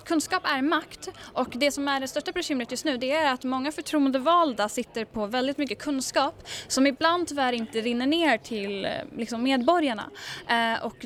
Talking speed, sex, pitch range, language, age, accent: 170 wpm, female, 205-270 Hz, English, 10-29, Norwegian